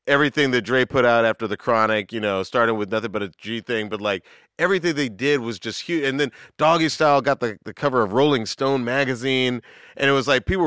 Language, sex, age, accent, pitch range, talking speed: English, male, 40-59, American, 110-140 Hz, 235 wpm